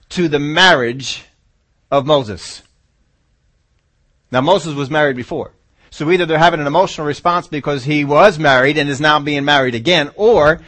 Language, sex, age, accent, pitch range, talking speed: English, male, 40-59, American, 125-185 Hz, 155 wpm